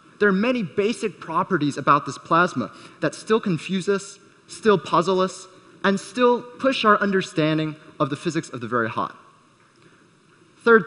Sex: male